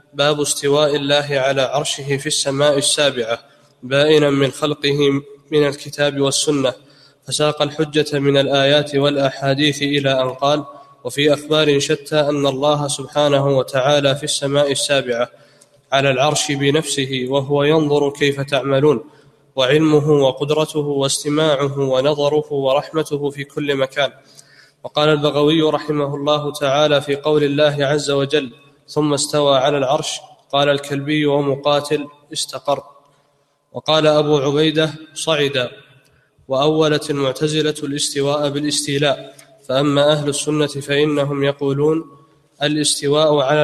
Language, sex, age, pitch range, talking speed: Arabic, male, 20-39, 140-150 Hz, 110 wpm